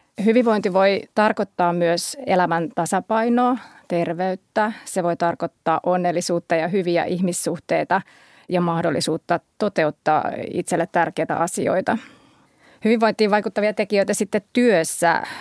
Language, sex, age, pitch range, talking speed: Finnish, female, 30-49, 175-220 Hz, 95 wpm